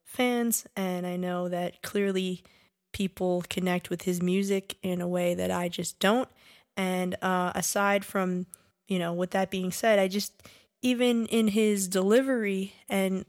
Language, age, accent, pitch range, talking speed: English, 10-29, American, 180-210 Hz, 160 wpm